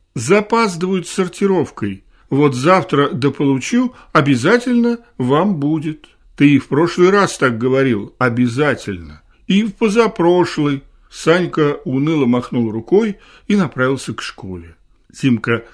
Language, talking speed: Russian, 105 wpm